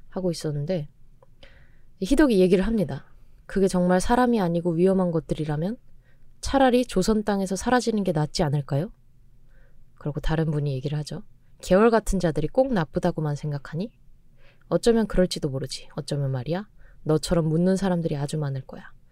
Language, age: Korean, 20-39